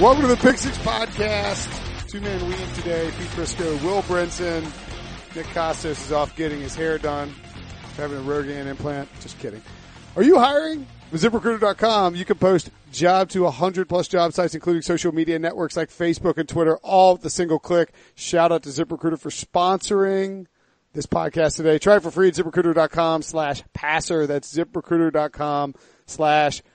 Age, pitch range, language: 40-59, 145-175 Hz, English